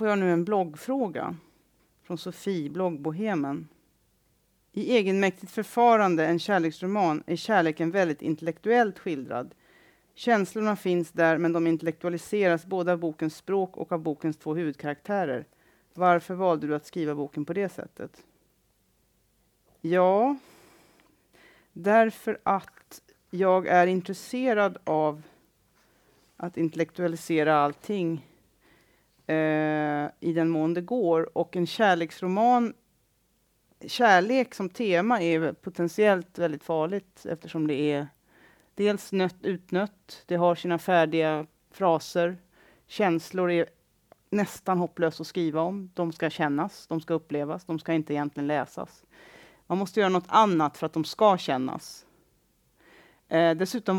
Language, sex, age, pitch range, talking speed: Swedish, female, 40-59, 160-195 Hz, 120 wpm